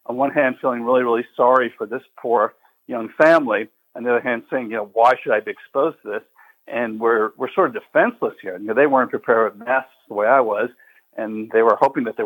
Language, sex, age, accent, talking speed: English, male, 50-69, American, 245 wpm